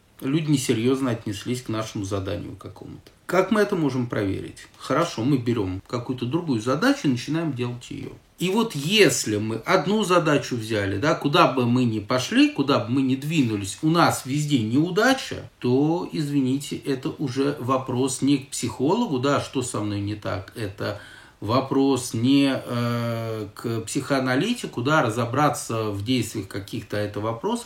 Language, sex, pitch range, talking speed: Russian, male, 110-145 Hz, 155 wpm